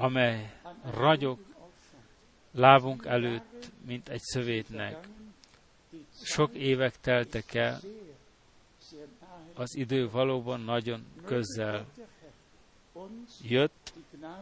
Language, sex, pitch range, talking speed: Hungarian, male, 120-145 Hz, 70 wpm